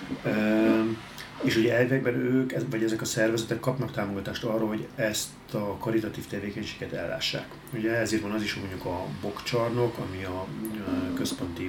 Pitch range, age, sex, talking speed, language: 95-120 Hz, 30-49, male, 155 wpm, Hungarian